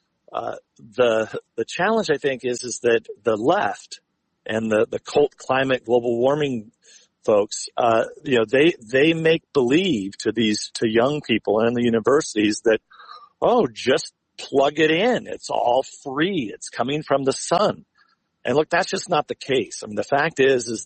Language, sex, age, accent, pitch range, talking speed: English, male, 50-69, American, 120-165 Hz, 175 wpm